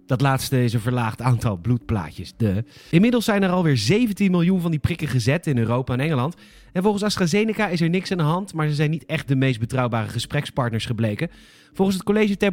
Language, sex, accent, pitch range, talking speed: Dutch, male, Dutch, 125-175 Hz, 215 wpm